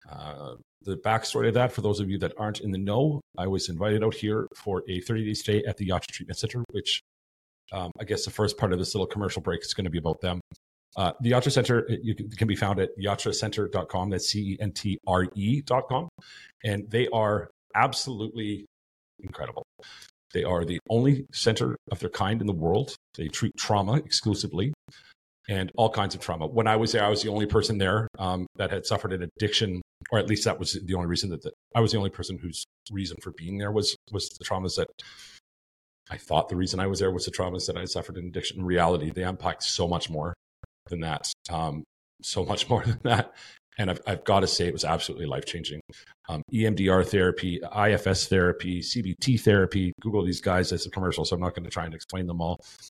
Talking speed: 215 wpm